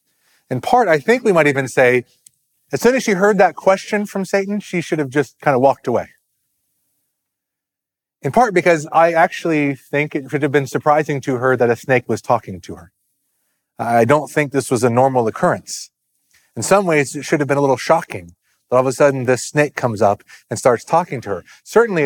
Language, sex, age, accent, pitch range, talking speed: English, male, 30-49, American, 120-155 Hz, 210 wpm